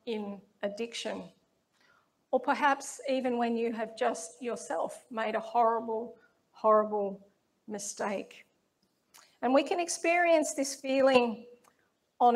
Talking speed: 105 wpm